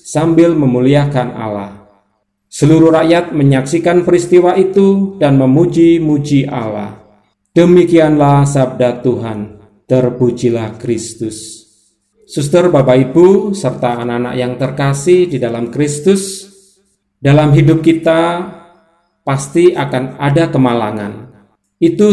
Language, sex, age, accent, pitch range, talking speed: Indonesian, male, 40-59, native, 125-170 Hz, 90 wpm